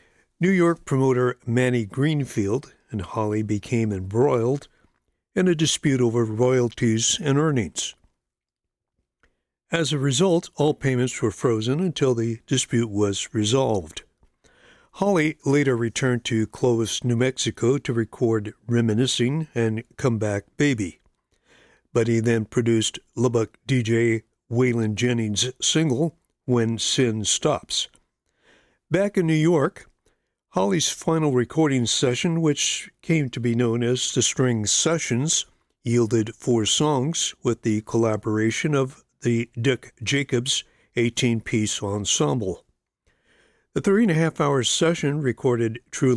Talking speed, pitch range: 115 wpm, 115-140 Hz